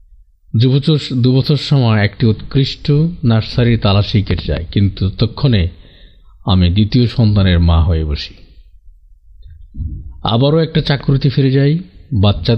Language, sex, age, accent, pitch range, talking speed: Bengali, male, 50-69, native, 85-120 Hz, 105 wpm